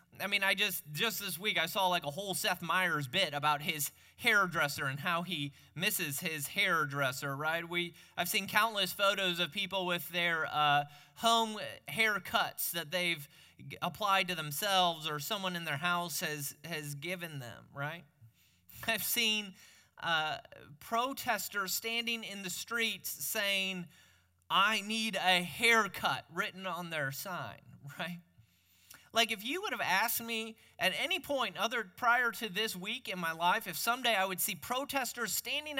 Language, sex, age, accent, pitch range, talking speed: English, male, 20-39, American, 160-230 Hz, 160 wpm